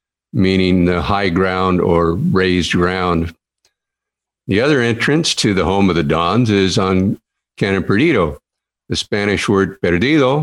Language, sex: English, male